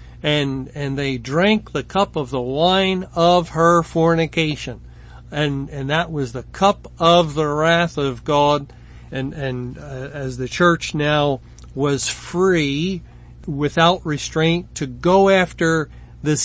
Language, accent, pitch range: English, American, 135-170 Hz